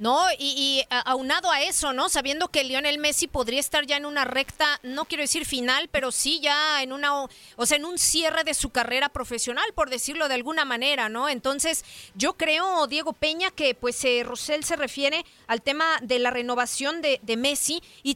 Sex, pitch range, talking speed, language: female, 255-320 Hz, 205 wpm, Spanish